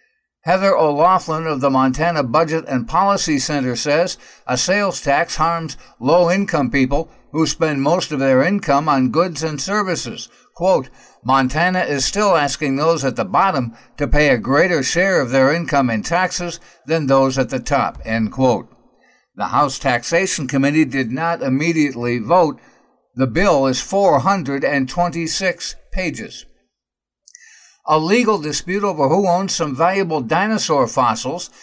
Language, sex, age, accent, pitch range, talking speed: English, male, 60-79, American, 135-180 Hz, 140 wpm